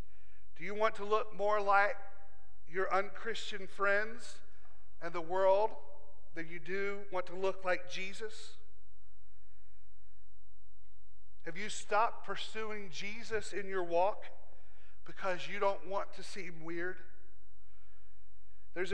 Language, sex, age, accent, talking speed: English, male, 40-59, American, 110 wpm